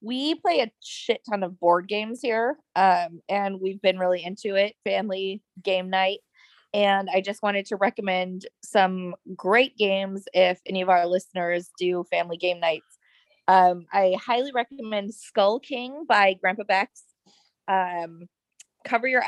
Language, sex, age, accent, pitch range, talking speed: English, female, 20-39, American, 180-215 Hz, 155 wpm